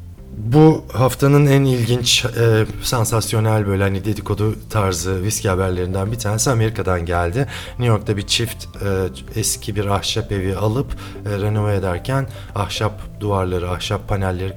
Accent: native